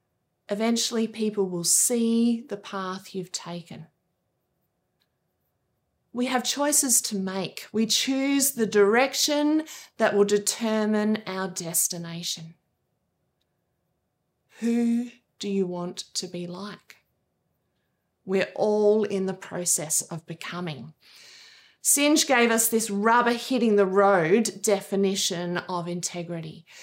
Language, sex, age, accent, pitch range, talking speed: English, female, 20-39, Australian, 195-245 Hz, 100 wpm